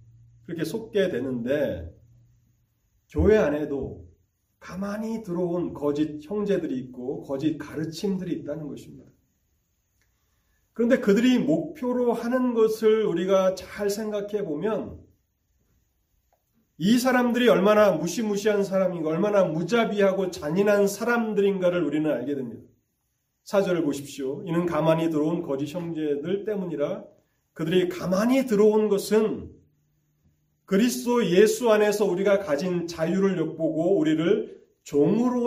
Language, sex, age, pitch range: Korean, male, 40-59, 140-210 Hz